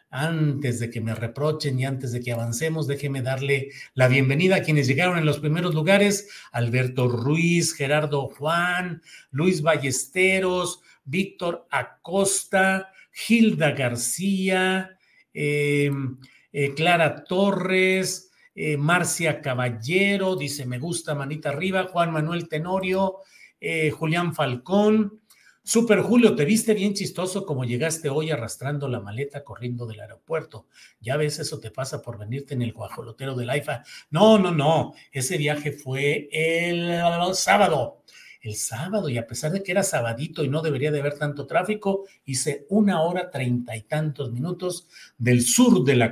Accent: Mexican